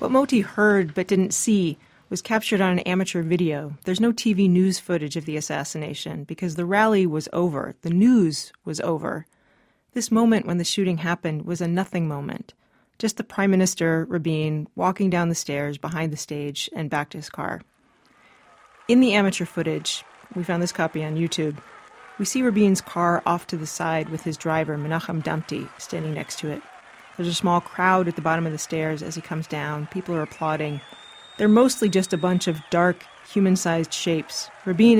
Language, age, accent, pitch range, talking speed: English, 30-49, American, 160-190 Hz, 190 wpm